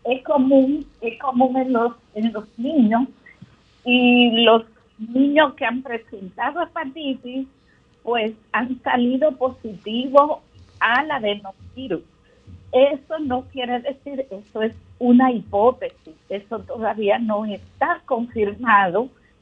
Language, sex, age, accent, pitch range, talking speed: Spanish, female, 50-69, American, 210-260 Hz, 110 wpm